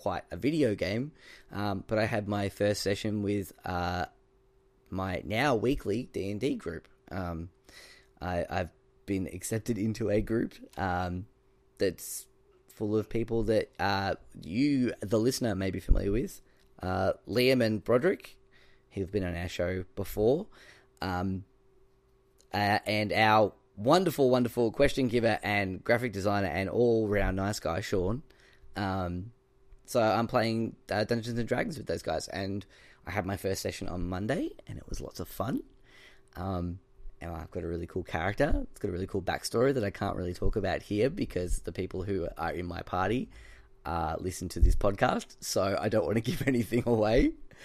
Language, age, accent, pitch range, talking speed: English, 10-29, Australian, 95-120 Hz, 165 wpm